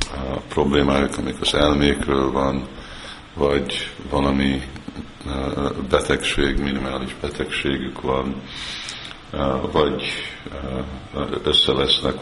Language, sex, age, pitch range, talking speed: Hungarian, male, 50-69, 65-70 Hz, 70 wpm